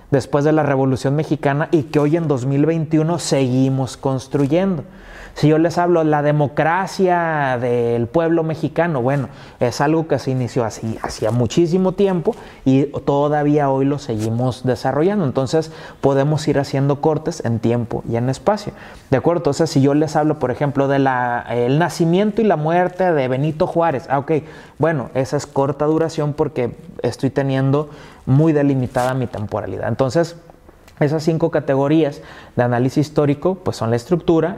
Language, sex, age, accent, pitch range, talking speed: Spanish, male, 30-49, Mexican, 135-160 Hz, 155 wpm